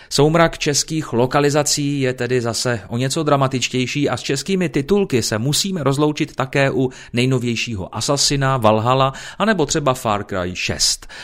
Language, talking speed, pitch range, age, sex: Czech, 140 wpm, 110-145 Hz, 30-49, male